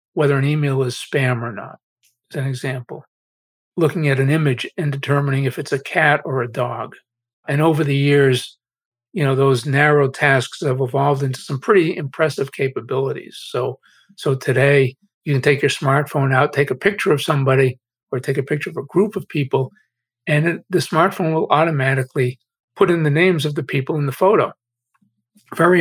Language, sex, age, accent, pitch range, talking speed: English, male, 50-69, American, 130-155 Hz, 185 wpm